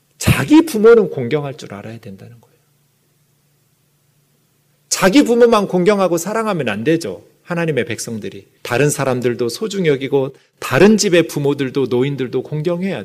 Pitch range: 145-190 Hz